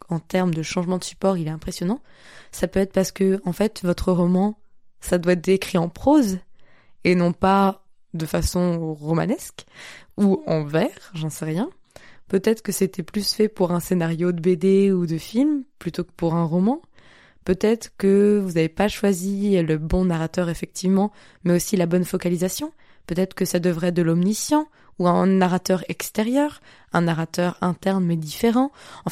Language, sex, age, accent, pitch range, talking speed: French, female, 20-39, French, 175-215 Hz, 175 wpm